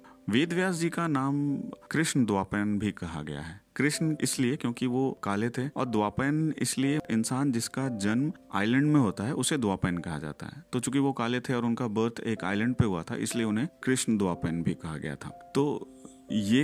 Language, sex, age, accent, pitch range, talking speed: Hindi, male, 40-59, native, 90-120 Hz, 195 wpm